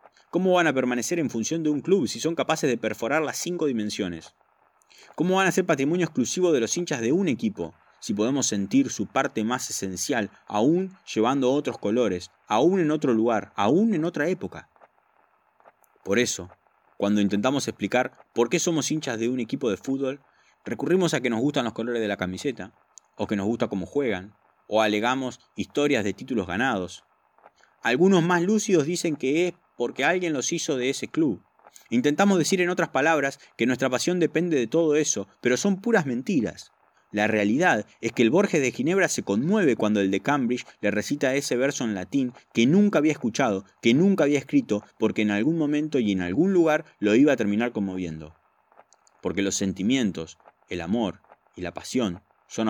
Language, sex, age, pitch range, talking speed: Spanish, male, 20-39, 105-155 Hz, 185 wpm